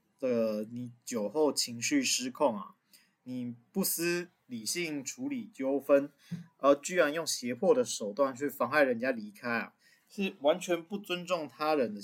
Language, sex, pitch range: Chinese, male, 125-210 Hz